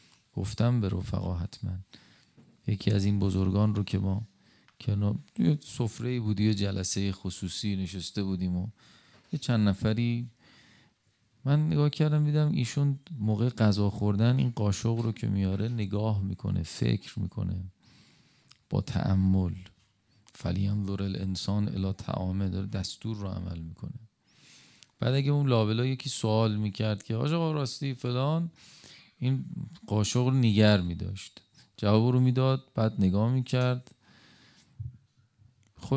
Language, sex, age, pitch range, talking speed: Persian, male, 40-59, 100-125 Hz, 125 wpm